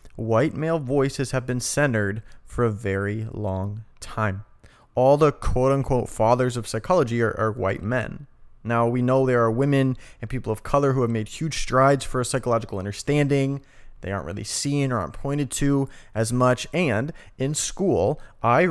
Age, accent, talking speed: 30-49, American, 175 wpm